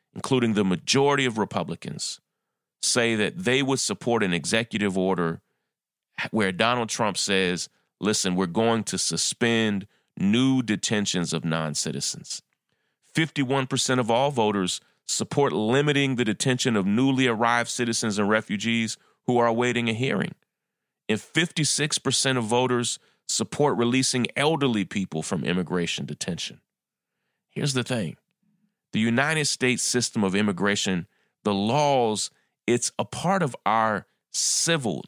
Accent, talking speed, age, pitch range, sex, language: American, 125 wpm, 30-49, 105-140 Hz, male, English